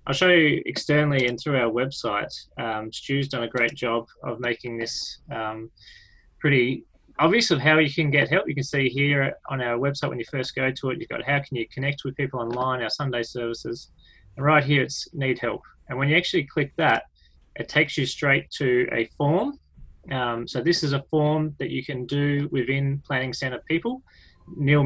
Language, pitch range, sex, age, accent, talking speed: English, 120-145 Hz, male, 20-39, Australian, 205 wpm